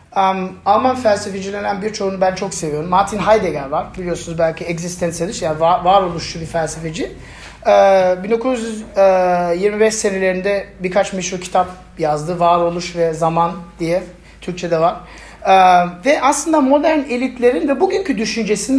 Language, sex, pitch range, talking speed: Turkish, male, 175-245 Hz, 125 wpm